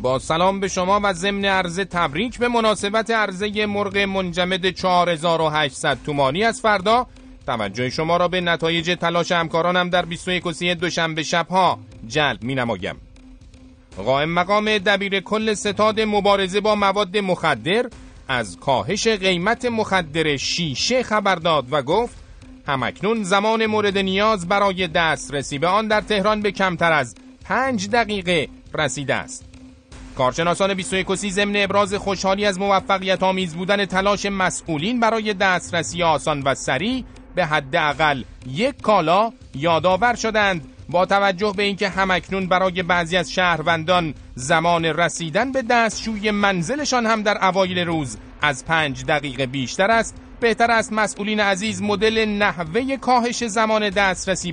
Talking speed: 135 wpm